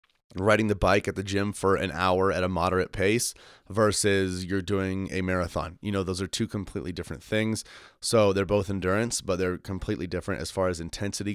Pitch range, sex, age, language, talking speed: 90-105 Hz, male, 30-49, English, 200 wpm